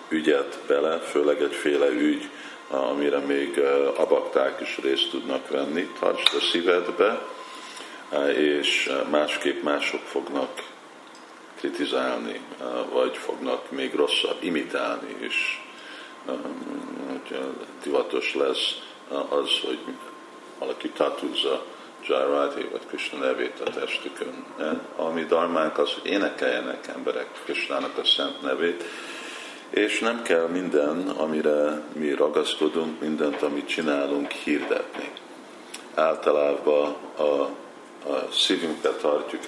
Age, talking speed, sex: 50-69, 95 wpm, male